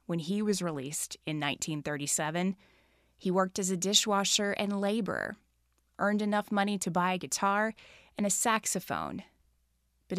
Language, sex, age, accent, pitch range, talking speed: English, female, 20-39, American, 165-210 Hz, 140 wpm